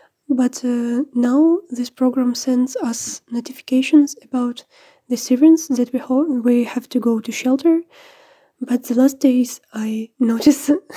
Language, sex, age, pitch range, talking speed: Ukrainian, female, 20-39, 240-285 Hz, 140 wpm